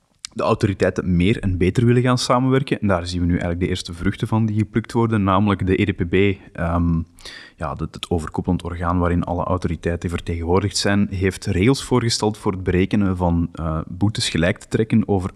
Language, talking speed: Dutch, 175 wpm